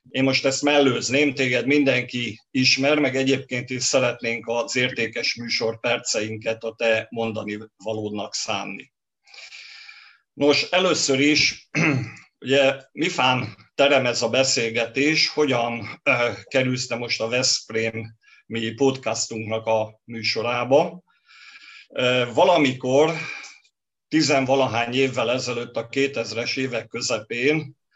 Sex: male